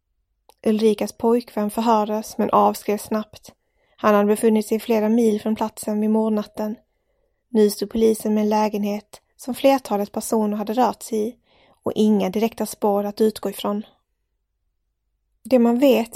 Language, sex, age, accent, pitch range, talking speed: English, female, 20-39, Swedish, 210-235 Hz, 145 wpm